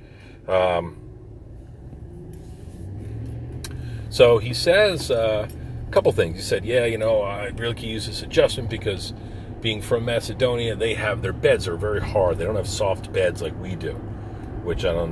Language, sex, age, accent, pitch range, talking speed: English, male, 40-59, American, 90-110 Hz, 165 wpm